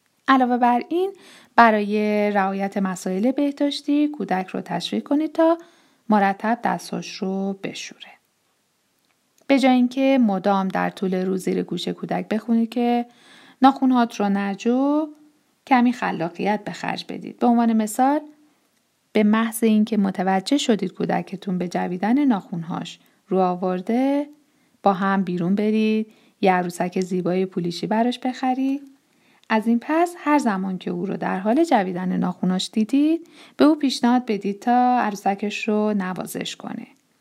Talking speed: 130 wpm